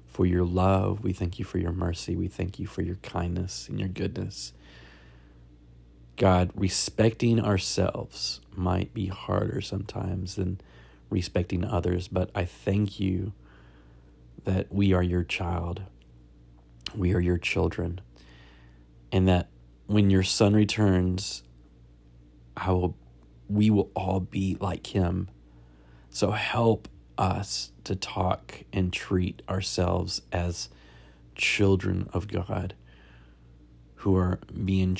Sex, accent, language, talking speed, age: male, American, English, 115 wpm, 30-49